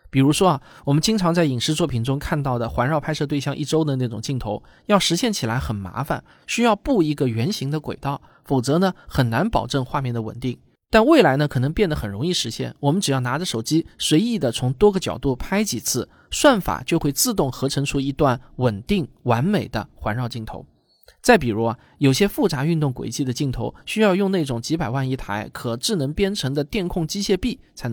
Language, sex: Chinese, male